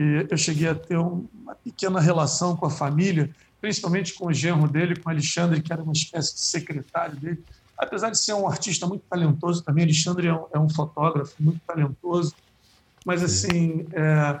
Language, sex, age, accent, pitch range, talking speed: Portuguese, male, 50-69, Brazilian, 145-170 Hz, 180 wpm